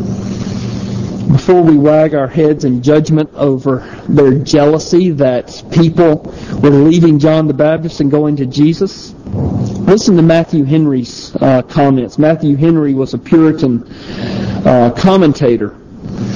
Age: 40-59